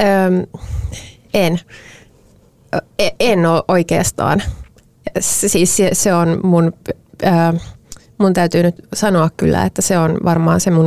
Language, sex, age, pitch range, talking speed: Finnish, female, 30-49, 120-180 Hz, 75 wpm